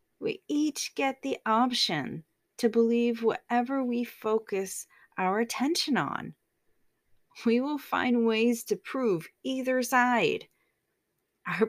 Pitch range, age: 175-255 Hz, 30-49